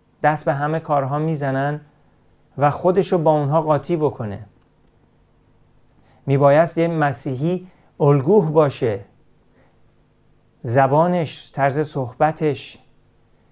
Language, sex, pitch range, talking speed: Persian, male, 130-160 Hz, 85 wpm